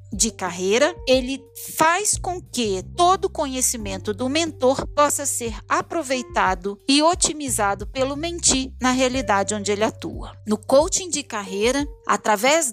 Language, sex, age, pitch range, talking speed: Portuguese, female, 50-69, 210-290 Hz, 130 wpm